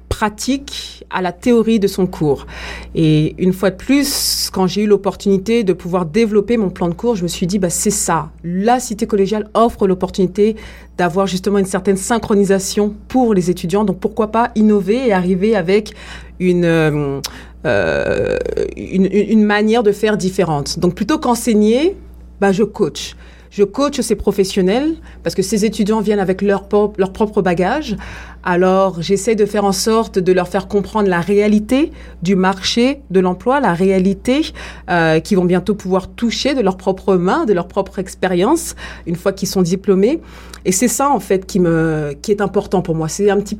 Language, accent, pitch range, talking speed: French, French, 185-225 Hz, 180 wpm